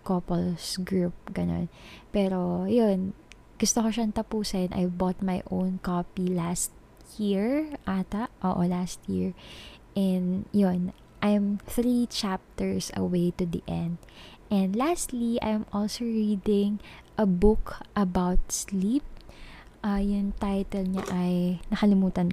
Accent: native